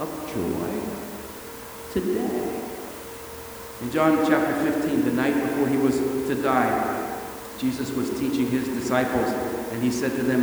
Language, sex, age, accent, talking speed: English, male, 50-69, American, 140 wpm